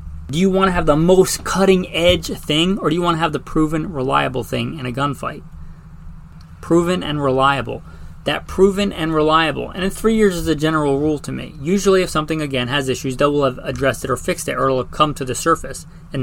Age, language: 30-49, English